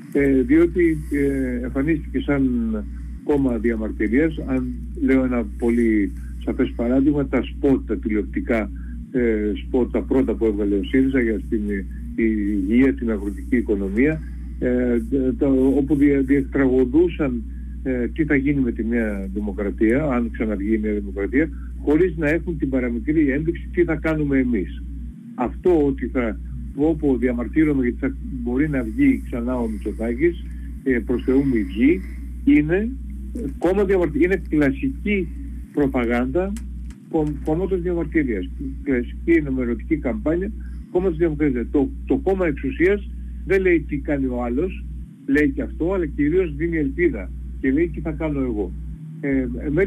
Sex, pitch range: male, 110-155 Hz